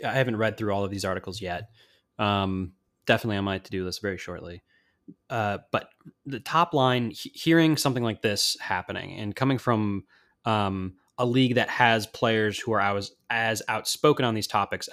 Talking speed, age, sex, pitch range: 190 wpm, 20-39, male, 100-130 Hz